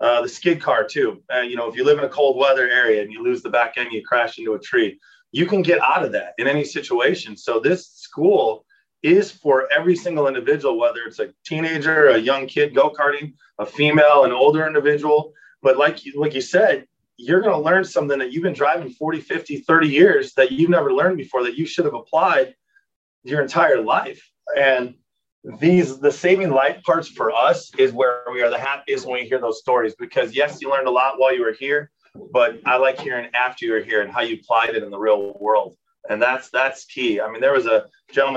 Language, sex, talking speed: English, male, 225 wpm